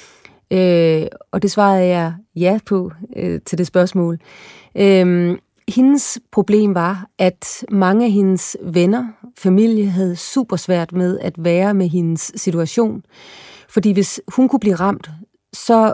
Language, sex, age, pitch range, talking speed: Danish, female, 30-49, 180-215 Hz, 130 wpm